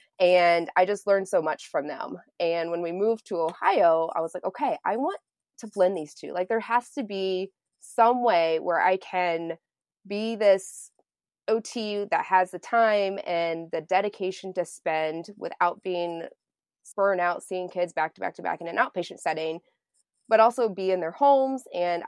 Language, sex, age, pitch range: English, female, 20-39, 170-210 Hz